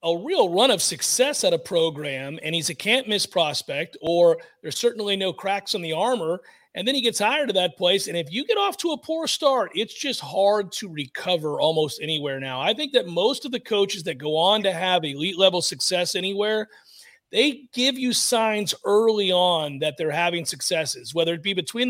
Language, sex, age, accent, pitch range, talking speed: English, male, 40-59, American, 170-225 Hz, 210 wpm